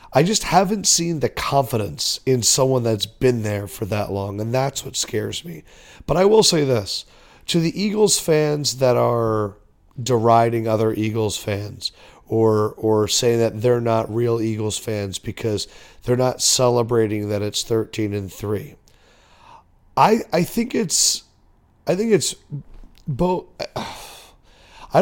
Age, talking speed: 40-59, 145 wpm